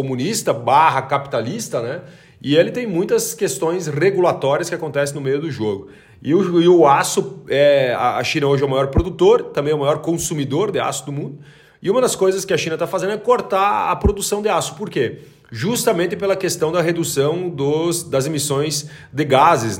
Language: Portuguese